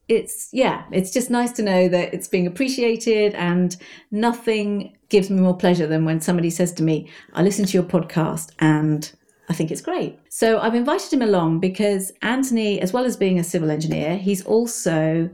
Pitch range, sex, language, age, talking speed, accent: 165-205 Hz, female, English, 40-59, 190 wpm, British